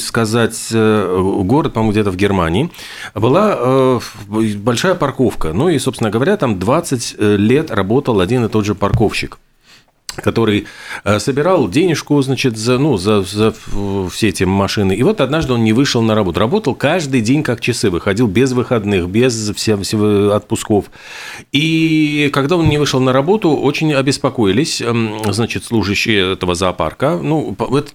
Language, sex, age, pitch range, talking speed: Russian, male, 40-59, 105-135 Hz, 140 wpm